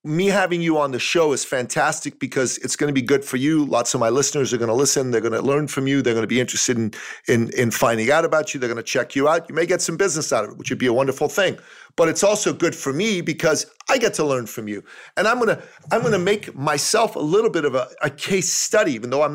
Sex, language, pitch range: male, English, 130-165 Hz